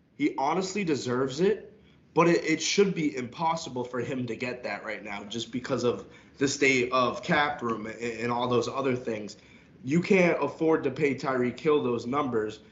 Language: English